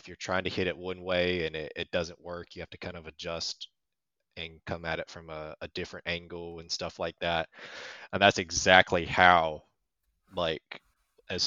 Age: 20-39